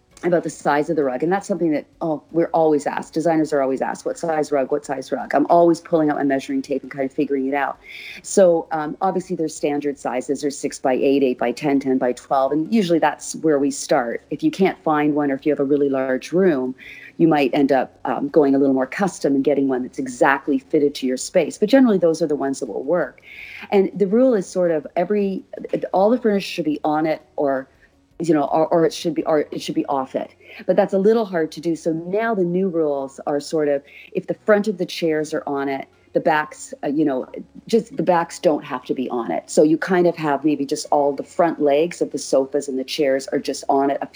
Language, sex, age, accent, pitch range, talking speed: English, female, 40-59, American, 140-175 Hz, 255 wpm